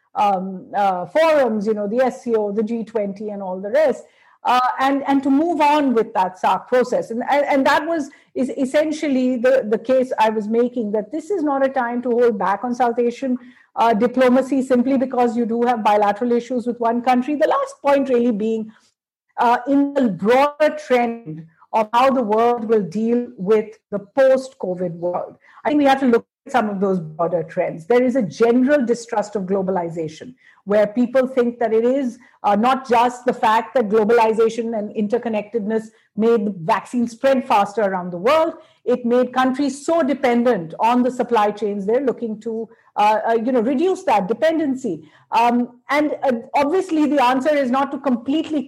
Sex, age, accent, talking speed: female, 50-69, Indian, 185 wpm